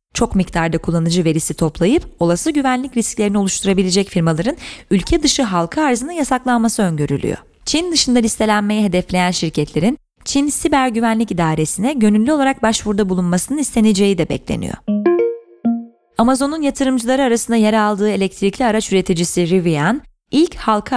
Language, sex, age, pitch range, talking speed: Turkish, female, 30-49, 175-235 Hz, 125 wpm